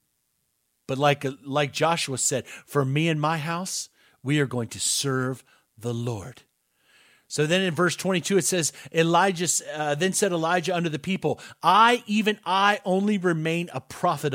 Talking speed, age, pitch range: 165 wpm, 40-59, 125-180 Hz